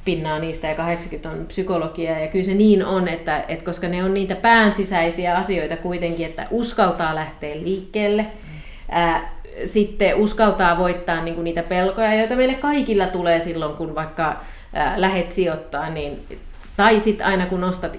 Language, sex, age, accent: Finnish, female, 30-49, native